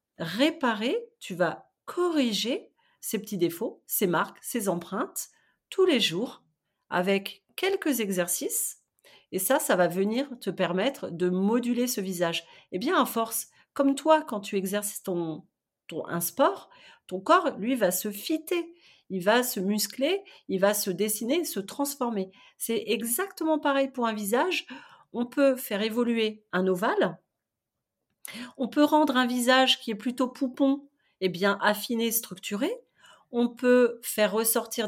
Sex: female